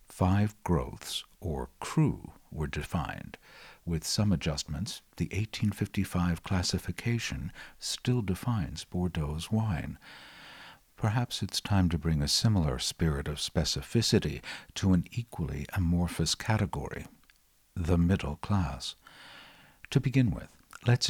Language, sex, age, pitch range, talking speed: English, male, 60-79, 80-105 Hz, 110 wpm